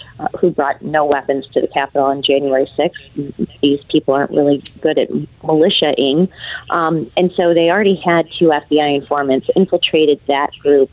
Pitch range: 145-180 Hz